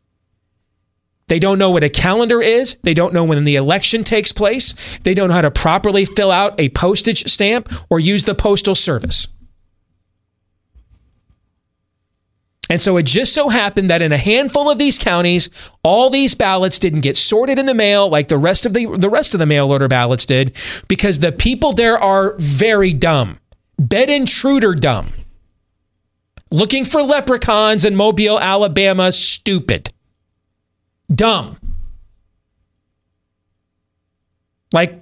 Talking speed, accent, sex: 145 wpm, American, male